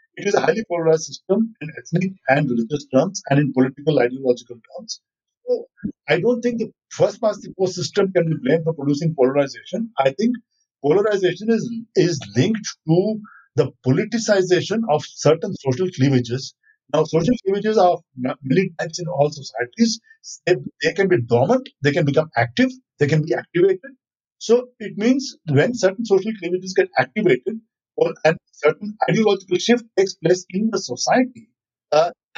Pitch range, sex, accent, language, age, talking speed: 145-220 Hz, male, Indian, English, 50-69, 155 wpm